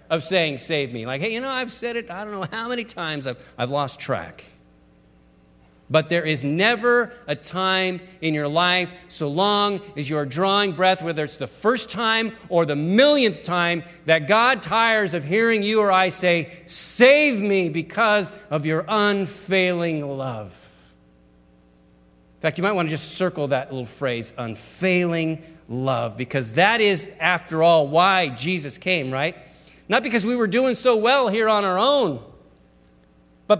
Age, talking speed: 40-59, 170 wpm